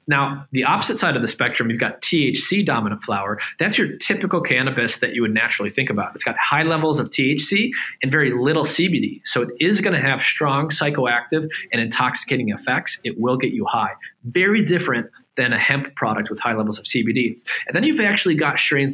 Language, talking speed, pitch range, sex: English, 205 wpm, 125-170 Hz, male